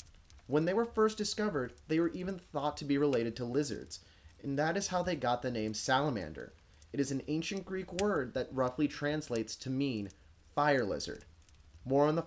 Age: 30-49